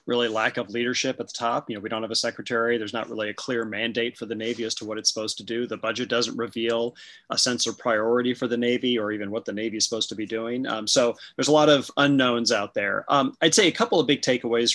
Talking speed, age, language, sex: 275 wpm, 30-49, English, male